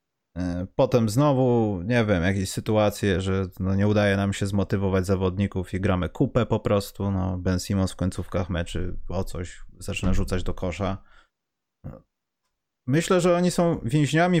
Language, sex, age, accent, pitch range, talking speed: Polish, male, 30-49, native, 100-140 Hz, 150 wpm